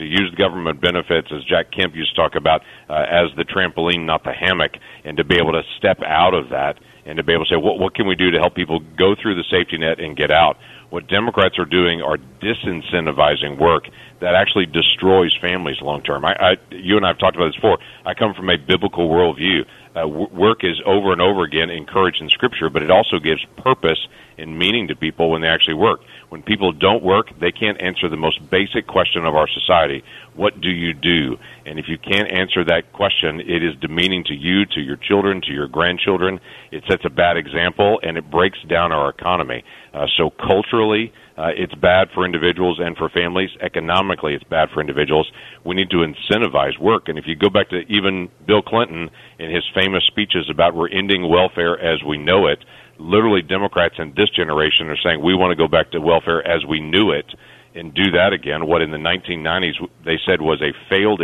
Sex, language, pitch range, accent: male, English, 80-95 Hz, American